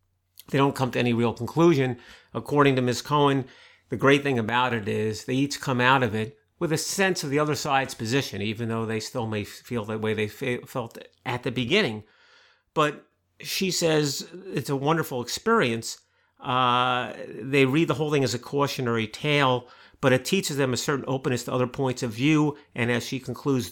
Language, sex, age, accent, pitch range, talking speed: English, male, 50-69, American, 115-145 Hz, 195 wpm